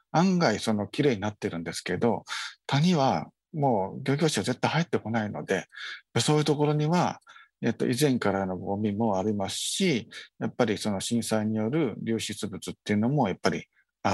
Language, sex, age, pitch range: Japanese, male, 50-69, 110-150 Hz